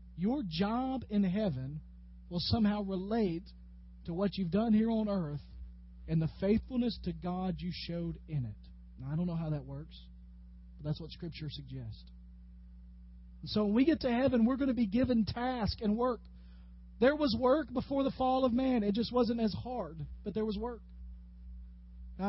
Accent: American